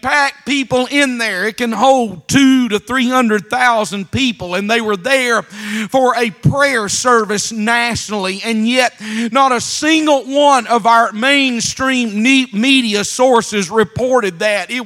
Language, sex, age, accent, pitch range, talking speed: English, male, 40-59, American, 225-265 Hz, 145 wpm